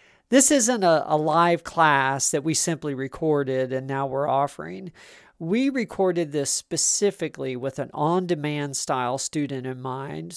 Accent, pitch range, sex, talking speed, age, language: American, 135-180 Hz, male, 145 wpm, 40-59, English